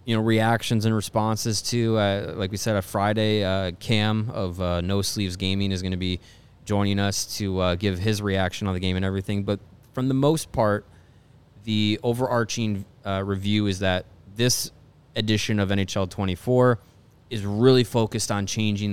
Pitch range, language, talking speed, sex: 95-115 Hz, English, 180 wpm, male